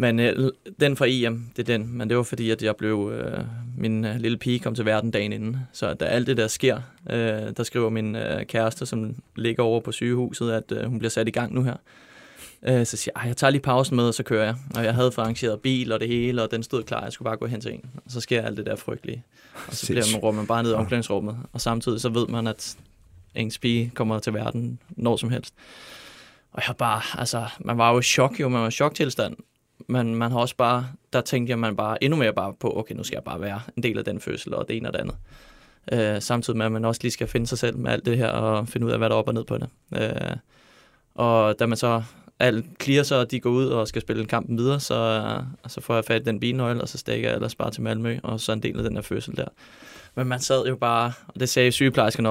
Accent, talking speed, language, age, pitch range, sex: native, 275 wpm, Danish, 20-39, 110-125 Hz, male